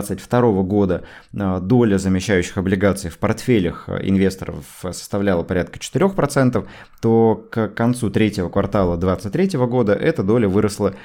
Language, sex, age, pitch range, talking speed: Russian, male, 20-39, 100-125 Hz, 115 wpm